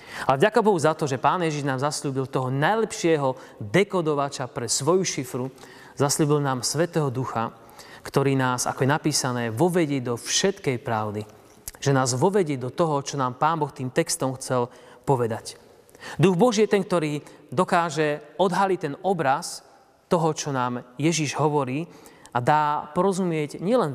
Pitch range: 125-160 Hz